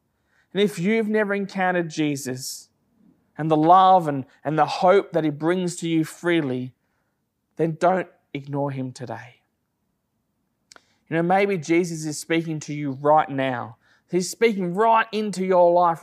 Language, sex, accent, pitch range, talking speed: English, male, Australian, 140-180 Hz, 150 wpm